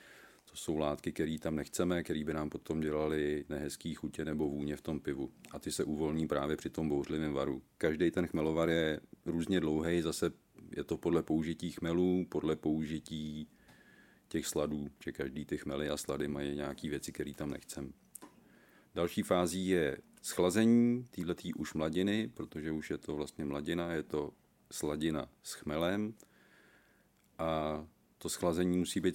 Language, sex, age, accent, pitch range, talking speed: Czech, male, 40-59, native, 75-90 Hz, 160 wpm